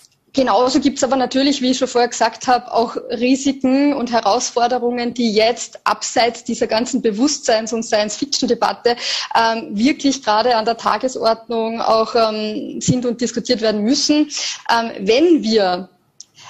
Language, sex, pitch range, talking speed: German, female, 220-270 Hz, 140 wpm